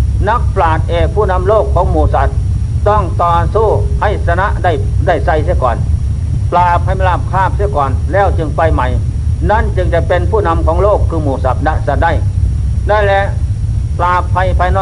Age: 60-79